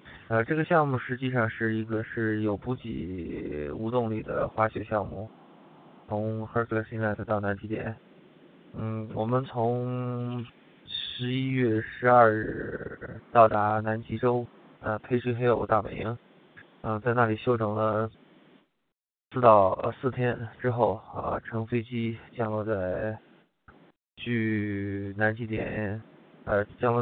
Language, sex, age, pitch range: English, male, 20-39, 105-120 Hz